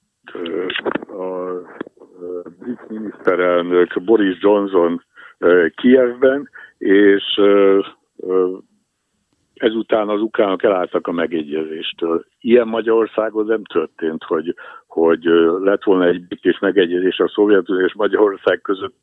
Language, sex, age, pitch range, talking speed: Hungarian, male, 60-79, 90-115 Hz, 90 wpm